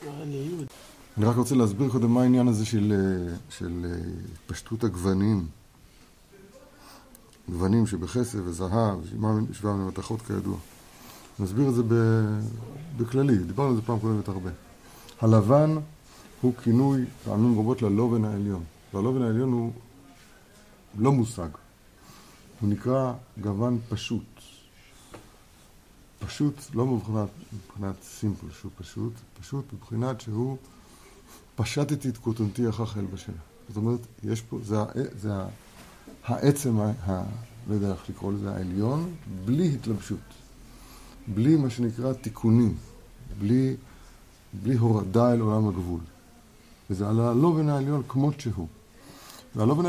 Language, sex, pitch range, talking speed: Hebrew, male, 100-125 Hz, 115 wpm